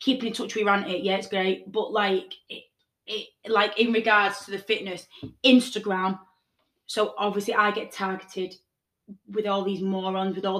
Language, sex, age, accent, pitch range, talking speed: English, female, 20-39, British, 195-240 Hz, 165 wpm